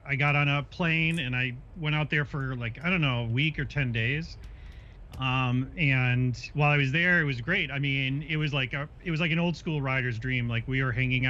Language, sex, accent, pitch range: English, male, American, 115-140 Hz